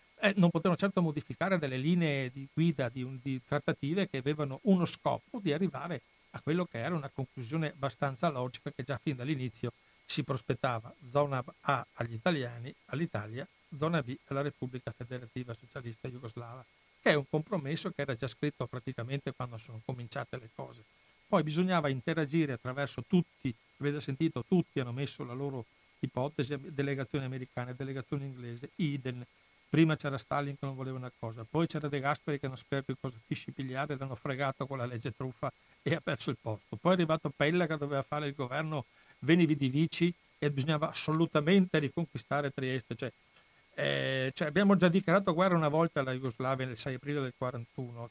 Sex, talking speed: male, 170 wpm